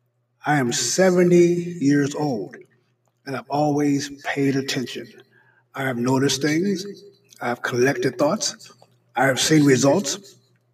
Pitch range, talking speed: 130-175 Hz, 125 wpm